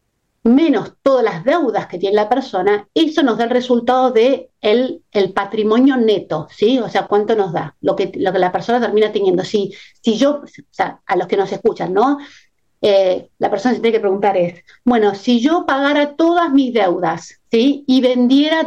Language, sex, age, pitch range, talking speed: Spanish, female, 50-69, 205-265 Hz, 195 wpm